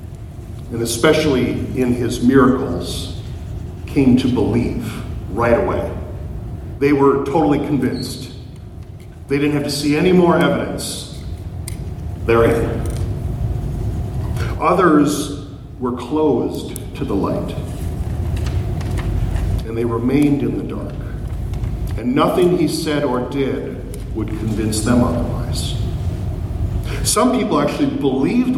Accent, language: American, English